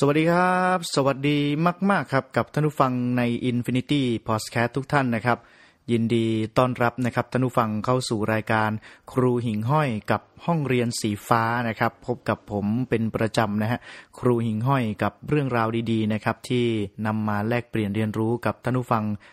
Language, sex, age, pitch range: Thai, male, 30-49, 110-130 Hz